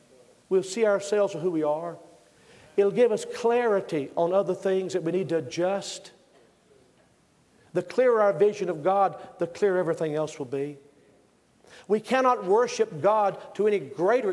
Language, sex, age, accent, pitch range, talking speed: English, male, 50-69, American, 155-205 Hz, 160 wpm